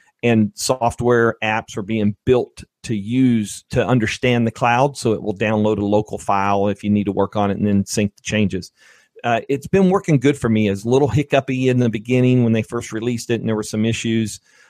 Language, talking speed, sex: English, 220 wpm, male